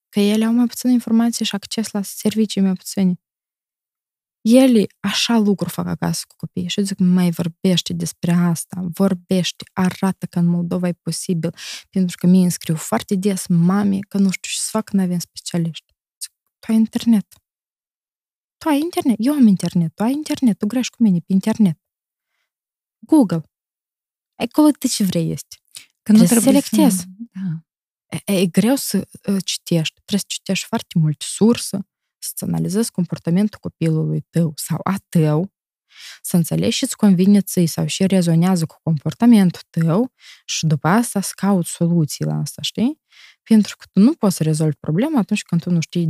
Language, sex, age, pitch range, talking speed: Romanian, female, 20-39, 170-220 Hz, 170 wpm